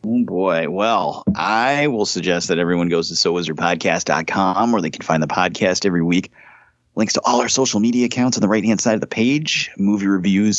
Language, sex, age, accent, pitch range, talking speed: English, male, 30-49, American, 90-115 Hz, 200 wpm